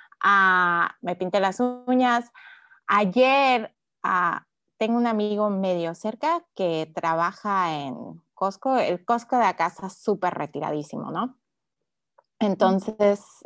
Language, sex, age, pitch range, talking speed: Spanish, female, 20-39, 180-255 Hz, 110 wpm